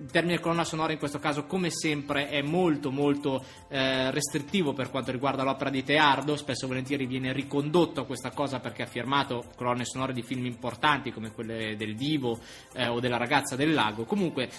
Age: 20-39